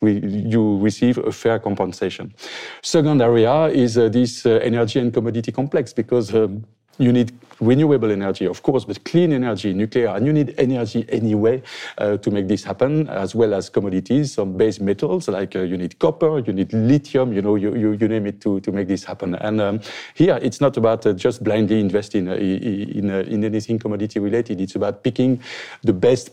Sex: male